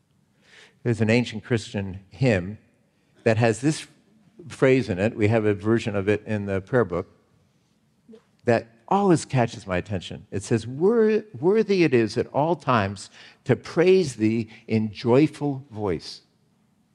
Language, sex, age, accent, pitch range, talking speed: English, male, 50-69, American, 105-145 Hz, 140 wpm